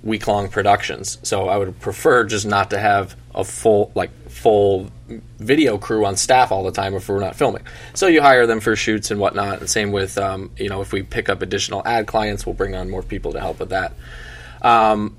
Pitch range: 95-110 Hz